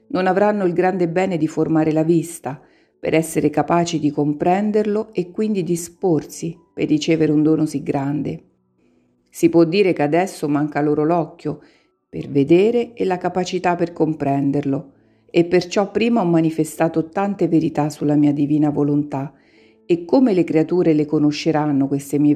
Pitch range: 150-180 Hz